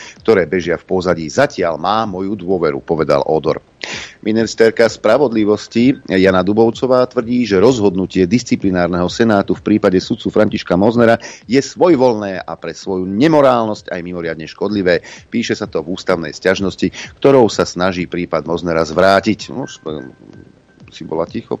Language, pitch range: Slovak, 90-110 Hz